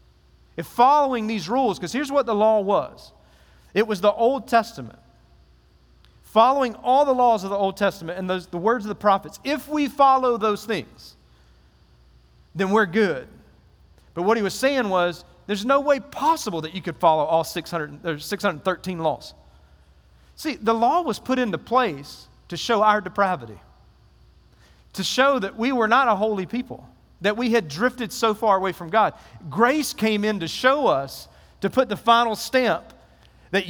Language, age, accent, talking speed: English, 40-59, American, 175 wpm